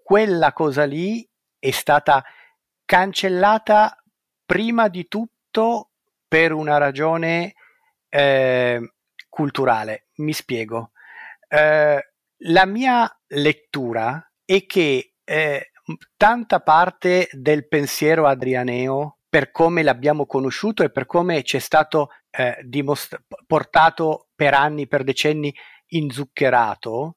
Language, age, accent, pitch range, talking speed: Italian, 50-69, native, 140-190 Hz, 100 wpm